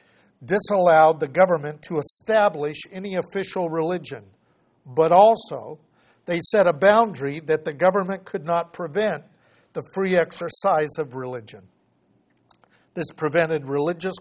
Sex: male